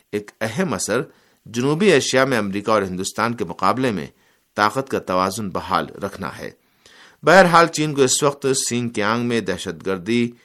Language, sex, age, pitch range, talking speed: Urdu, male, 50-69, 100-135 Hz, 170 wpm